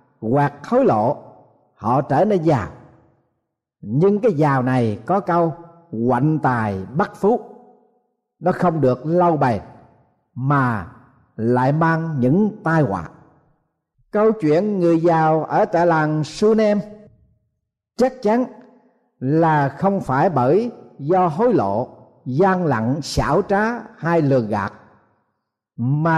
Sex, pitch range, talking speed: male, 140-205 Hz, 125 wpm